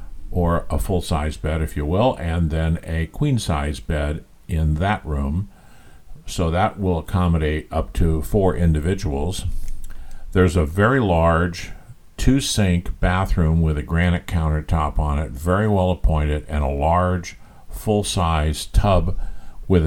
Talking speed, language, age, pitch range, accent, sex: 130 wpm, English, 50-69, 75-90 Hz, American, male